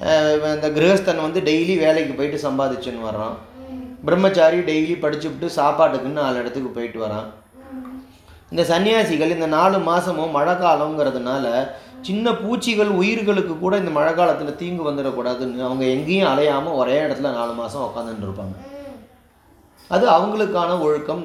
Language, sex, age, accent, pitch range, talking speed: Tamil, male, 30-49, native, 135-180 Hz, 125 wpm